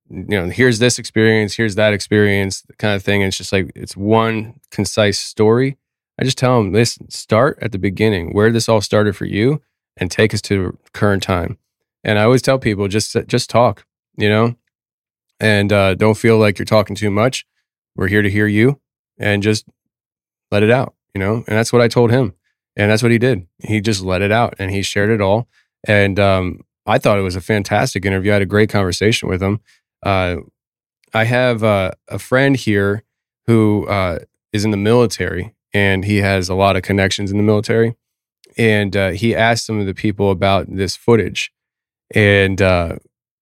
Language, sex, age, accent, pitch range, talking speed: English, male, 20-39, American, 100-115 Hz, 200 wpm